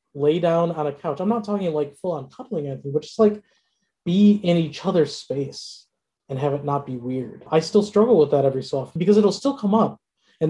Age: 20-39